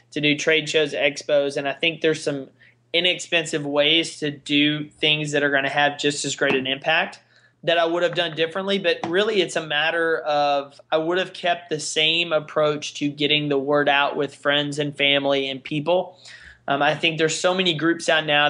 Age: 20-39